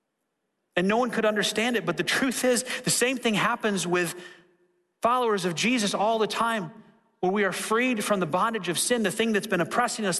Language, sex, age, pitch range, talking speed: English, male, 30-49, 145-210 Hz, 210 wpm